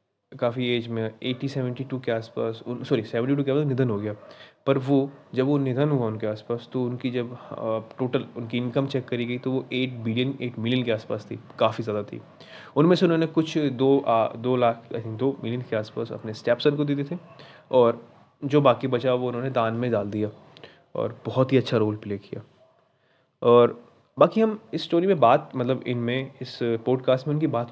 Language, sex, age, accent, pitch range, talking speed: Hindi, male, 20-39, native, 115-140 Hz, 210 wpm